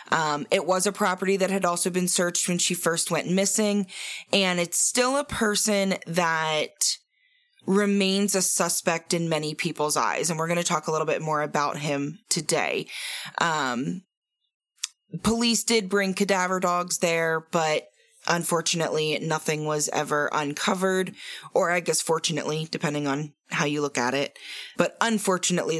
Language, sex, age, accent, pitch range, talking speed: English, female, 20-39, American, 160-195 Hz, 155 wpm